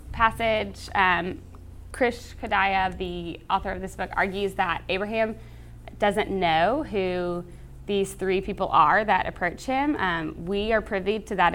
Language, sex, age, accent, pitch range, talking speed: English, female, 20-39, American, 170-200 Hz, 145 wpm